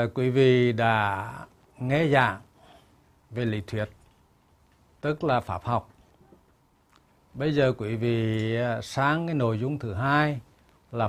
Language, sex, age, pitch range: Vietnamese, male, 60-79, 100-140 Hz